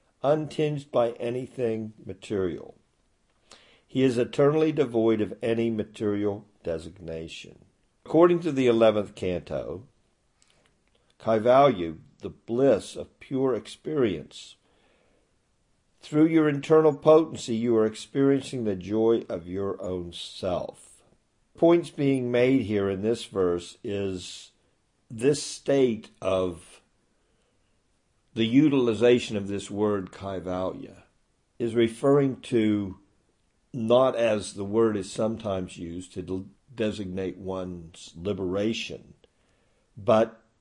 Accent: American